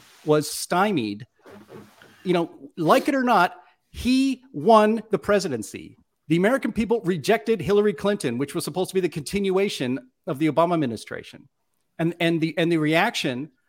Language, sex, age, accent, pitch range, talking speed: English, male, 40-59, American, 150-205 Hz, 155 wpm